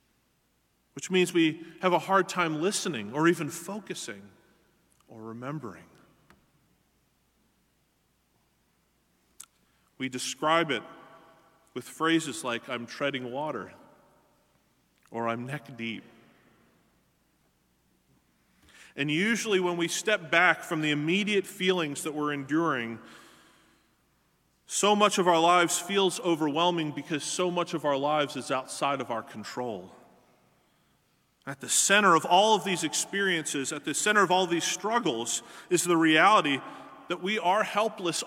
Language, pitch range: English, 140-180 Hz